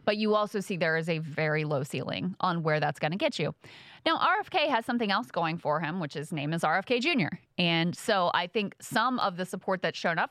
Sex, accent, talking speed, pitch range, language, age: female, American, 245 wpm, 160-195 Hz, English, 20-39